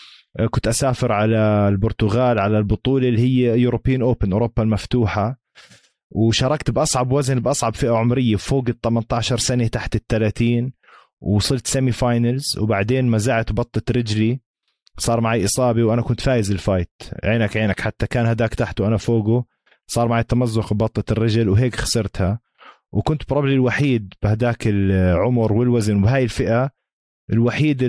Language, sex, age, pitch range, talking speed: Arabic, male, 20-39, 105-125 Hz, 135 wpm